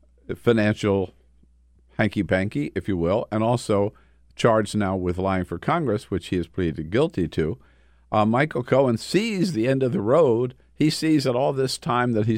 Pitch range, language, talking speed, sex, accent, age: 80-125 Hz, English, 175 wpm, male, American, 50-69